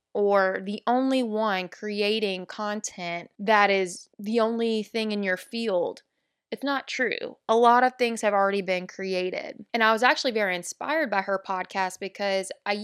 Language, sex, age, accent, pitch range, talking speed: English, female, 20-39, American, 190-245 Hz, 170 wpm